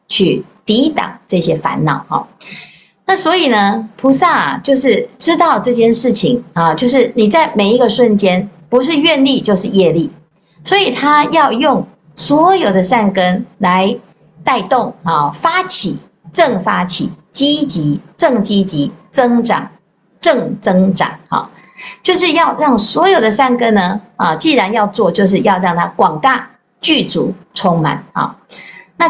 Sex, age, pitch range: female, 50-69, 190-275 Hz